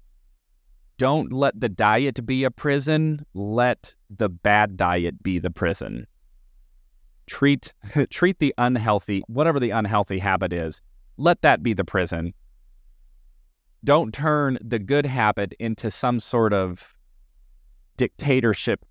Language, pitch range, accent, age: English, 90-125 Hz, American, 30-49